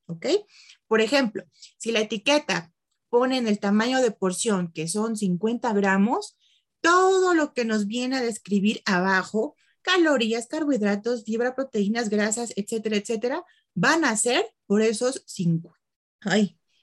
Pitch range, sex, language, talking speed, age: 200-270 Hz, female, English, 130 wpm, 30-49